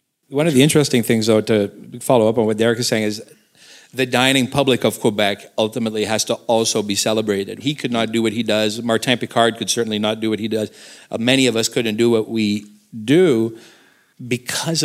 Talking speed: 210 wpm